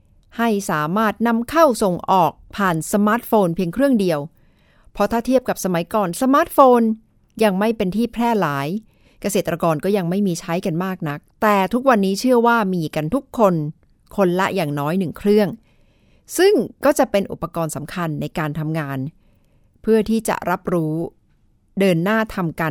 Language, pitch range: Thai, 160-220 Hz